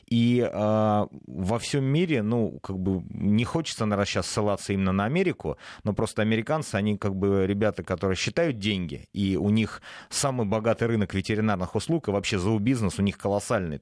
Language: Russian